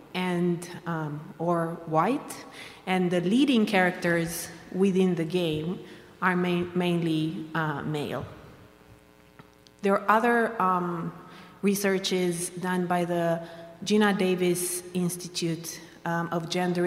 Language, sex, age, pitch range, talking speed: English, female, 30-49, 165-195 Hz, 105 wpm